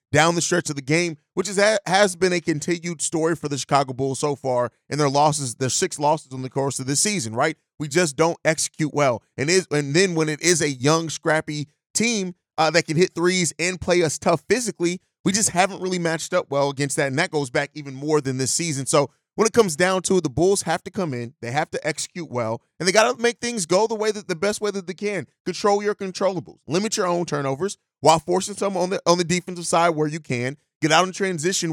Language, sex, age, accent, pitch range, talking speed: English, male, 30-49, American, 150-185 Hz, 250 wpm